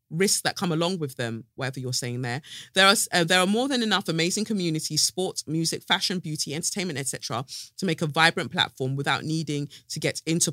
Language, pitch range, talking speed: English, 125-185 Hz, 205 wpm